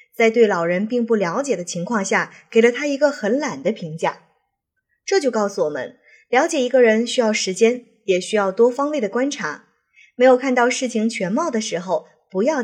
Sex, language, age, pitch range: female, Chinese, 20-39, 205-280 Hz